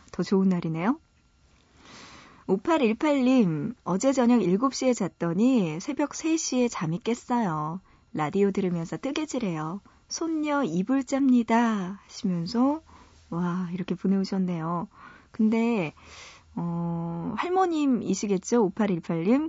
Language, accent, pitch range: Korean, native, 180-250 Hz